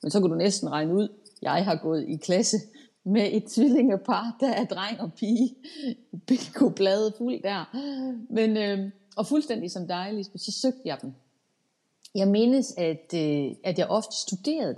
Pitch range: 185-240 Hz